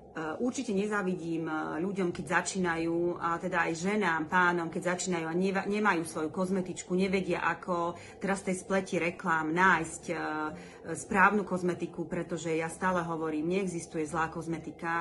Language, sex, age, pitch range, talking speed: Slovak, female, 30-49, 160-185 Hz, 130 wpm